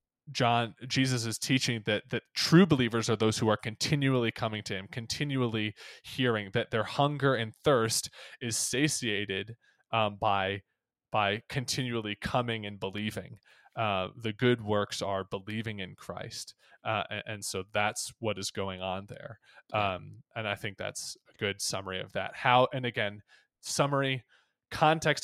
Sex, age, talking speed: male, 20-39, 155 wpm